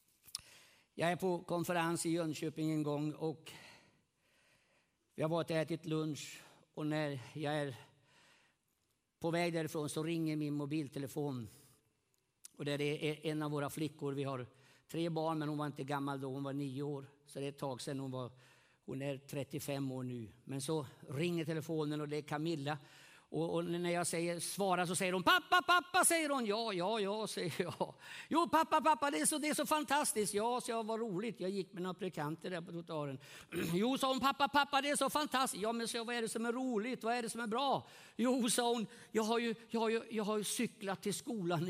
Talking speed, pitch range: 210 wpm, 155-245 Hz